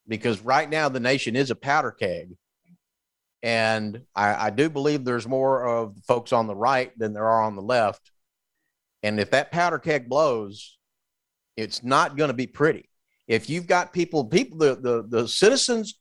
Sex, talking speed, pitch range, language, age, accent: male, 180 wpm, 125-190 Hz, English, 50-69, American